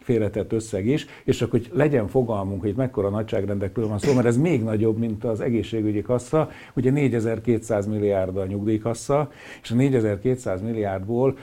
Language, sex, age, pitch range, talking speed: Hungarian, male, 60-79, 100-125 Hz, 150 wpm